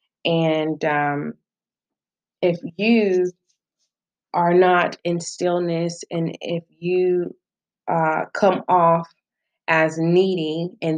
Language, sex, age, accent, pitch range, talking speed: English, female, 20-39, American, 150-175 Hz, 95 wpm